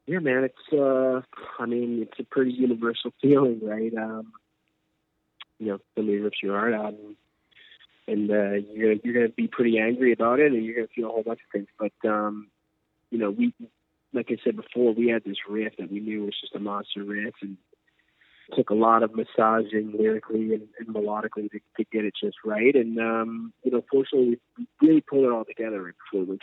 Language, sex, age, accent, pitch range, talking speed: English, male, 30-49, American, 100-115 Hz, 210 wpm